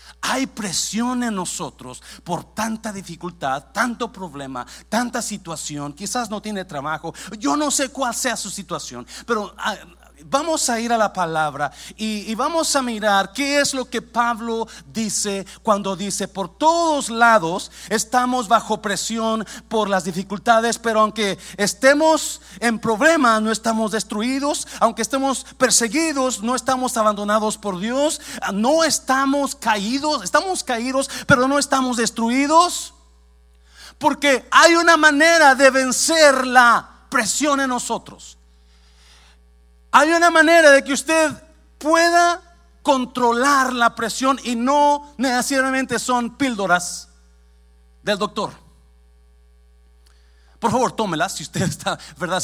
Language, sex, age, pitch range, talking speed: Spanish, male, 40-59, 180-260 Hz, 125 wpm